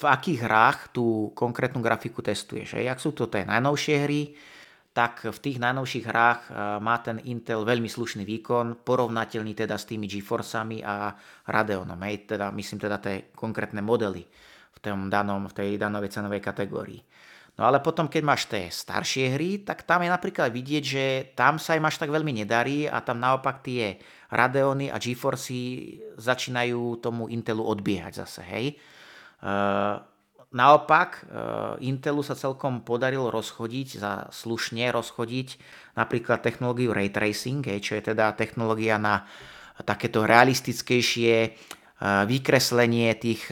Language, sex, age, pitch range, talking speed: Slovak, male, 30-49, 110-130 Hz, 140 wpm